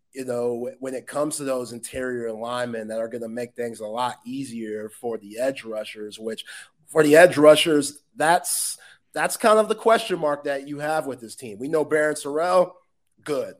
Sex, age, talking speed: male, 30-49, 200 wpm